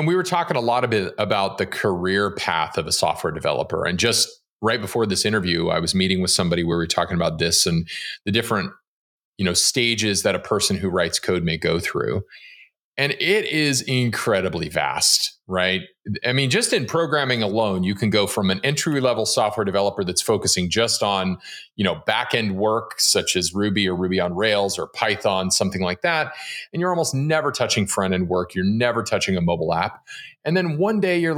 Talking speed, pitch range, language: 210 wpm, 100-170 Hz, English